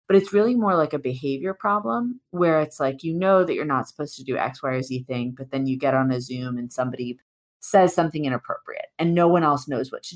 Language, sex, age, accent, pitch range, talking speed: English, female, 30-49, American, 130-170 Hz, 255 wpm